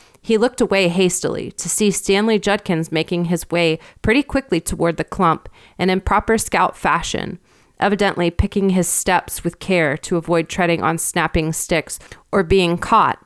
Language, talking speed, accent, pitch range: English, 165 wpm, American, 165-195 Hz